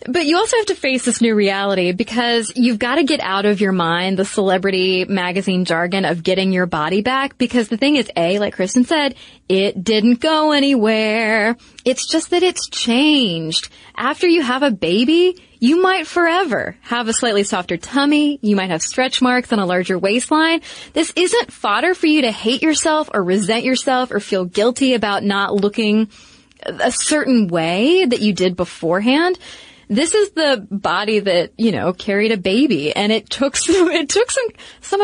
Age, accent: 20-39, American